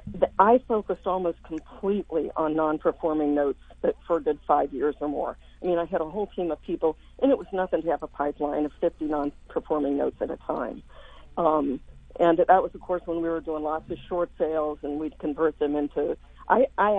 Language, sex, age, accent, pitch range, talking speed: English, female, 50-69, American, 165-205 Hz, 205 wpm